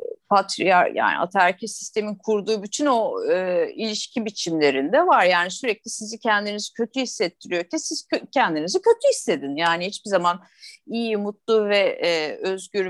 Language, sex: Turkish, female